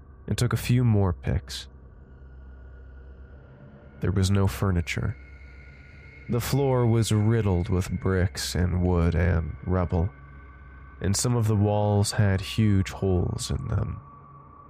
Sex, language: male, English